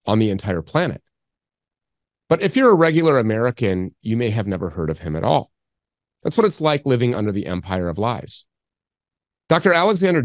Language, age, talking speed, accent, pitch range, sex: English, 30-49, 180 wpm, American, 95-130 Hz, male